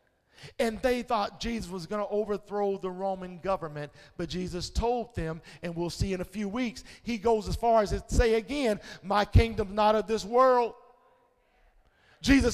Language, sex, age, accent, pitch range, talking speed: English, male, 50-69, American, 195-270 Hz, 175 wpm